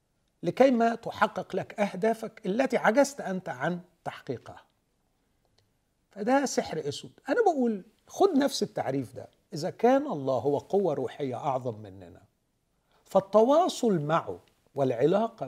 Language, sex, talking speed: Arabic, male, 115 wpm